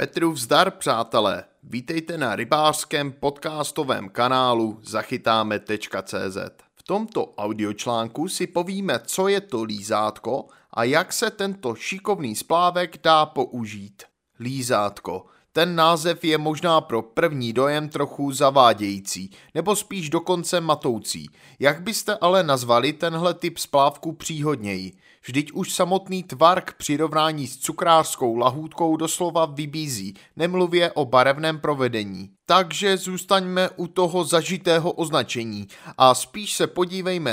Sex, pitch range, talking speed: male, 130-175 Hz, 115 wpm